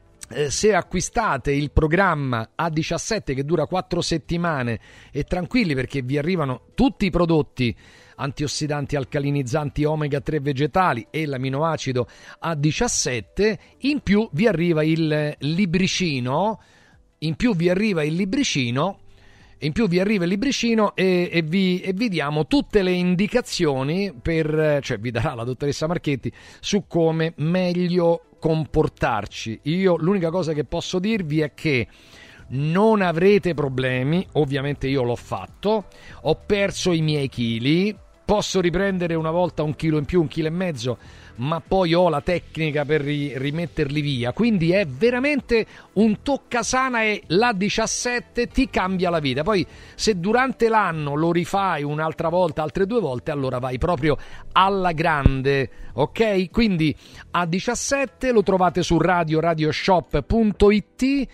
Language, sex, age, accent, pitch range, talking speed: Italian, male, 40-59, native, 140-190 Hz, 135 wpm